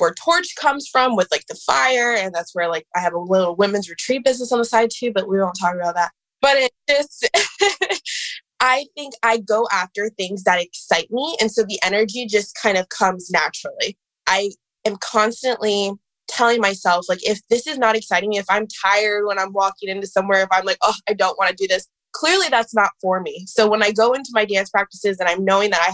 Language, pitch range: English, 190-235 Hz